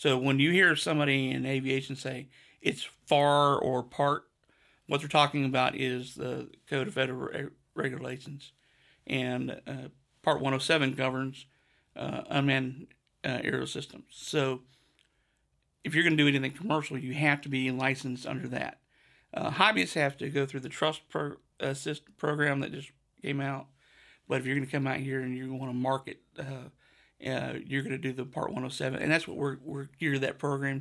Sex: male